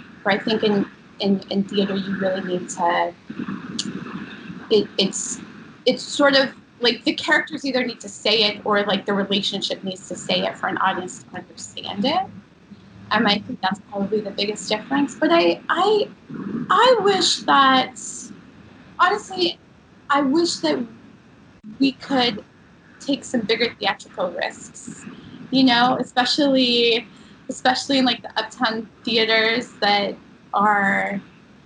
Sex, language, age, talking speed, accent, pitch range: female, English, 20-39, 140 wpm, American, 195-245 Hz